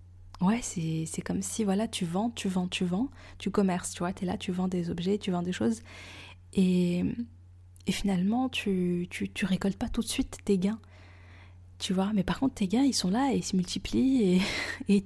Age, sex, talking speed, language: 20-39, female, 230 wpm, French